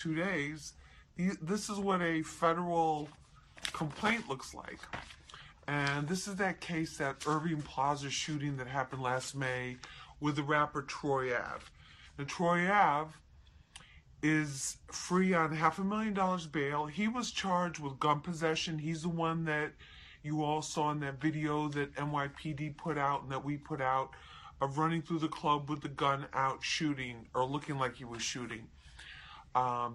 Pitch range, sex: 135-165 Hz, female